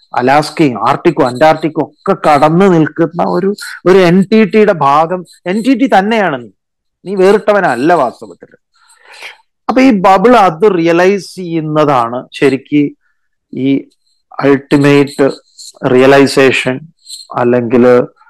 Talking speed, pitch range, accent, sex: 95 wpm, 150-210 Hz, native, male